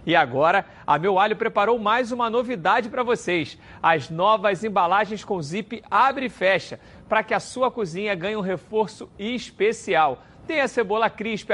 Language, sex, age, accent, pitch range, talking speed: Portuguese, male, 40-59, Brazilian, 200-240 Hz, 160 wpm